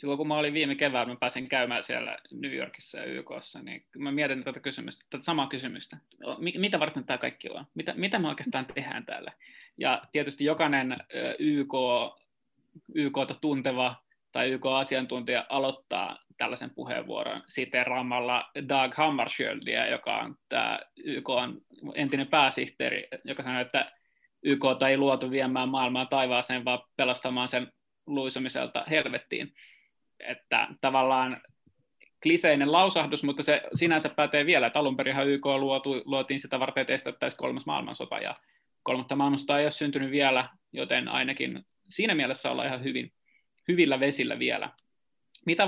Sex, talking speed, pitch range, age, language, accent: male, 135 wpm, 130-145 Hz, 20-39, Finnish, native